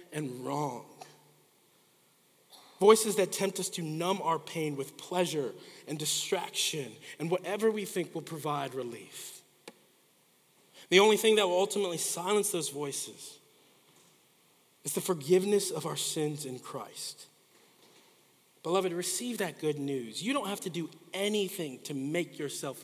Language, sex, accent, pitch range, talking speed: English, male, American, 155-195 Hz, 135 wpm